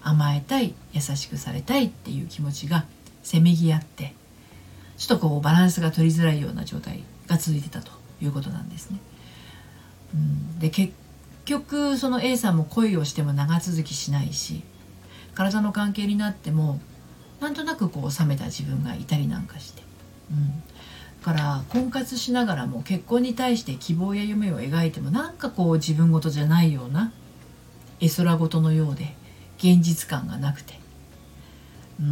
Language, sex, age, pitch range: Japanese, female, 50-69, 145-190 Hz